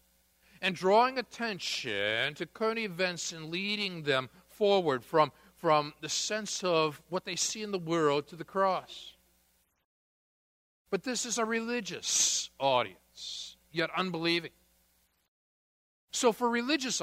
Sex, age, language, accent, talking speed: male, 50-69, English, American, 125 wpm